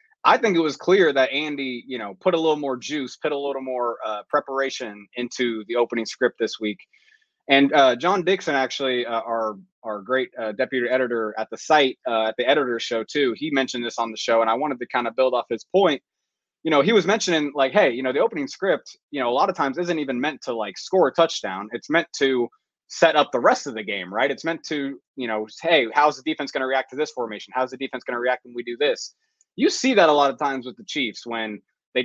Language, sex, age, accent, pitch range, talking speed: English, male, 20-39, American, 115-150 Hz, 255 wpm